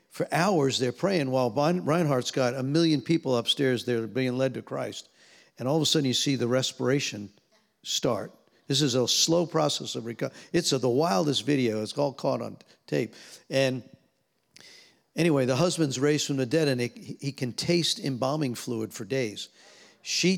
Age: 50-69